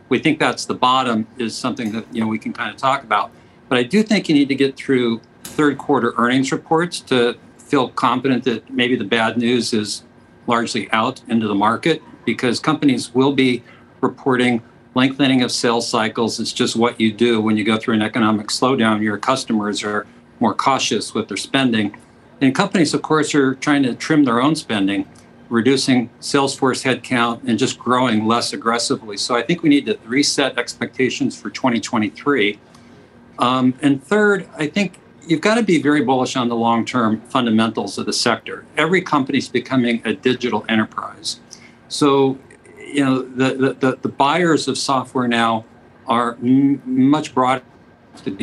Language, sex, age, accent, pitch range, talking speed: English, male, 50-69, American, 115-140 Hz, 170 wpm